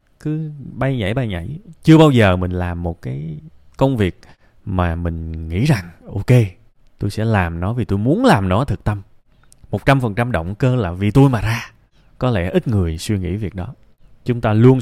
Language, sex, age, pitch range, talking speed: Vietnamese, male, 20-39, 95-135 Hz, 205 wpm